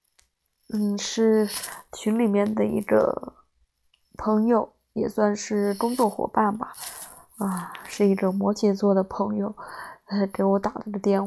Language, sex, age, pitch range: Chinese, female, 20-39, 195-225 Hz